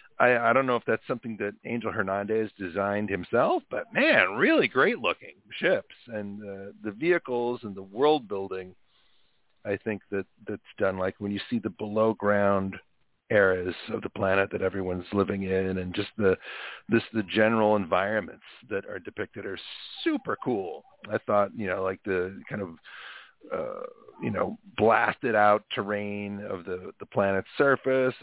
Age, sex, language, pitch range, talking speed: 40-59, male, English, 100-120 Hz, 165 wpm